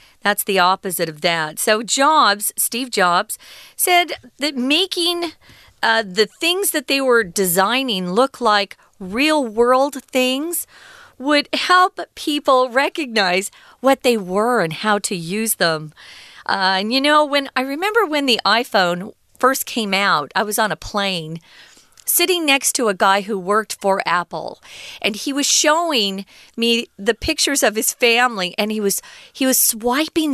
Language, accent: Chinese, American